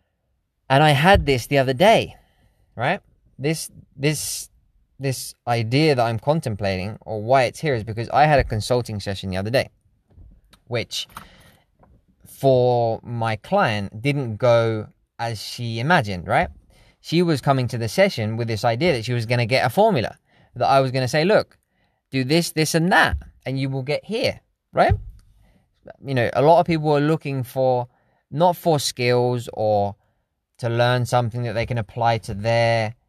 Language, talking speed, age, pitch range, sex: English, 170 wpm, 20-39, 115-145 Hz, male